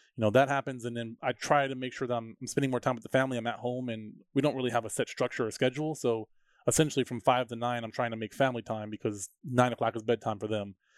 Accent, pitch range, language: American, 110-135 Hz, English